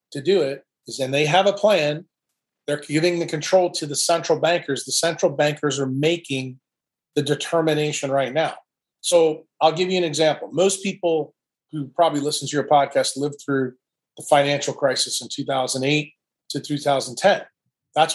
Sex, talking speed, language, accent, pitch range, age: male, 165 wpm, English, American, 140-165 Hz, 30-49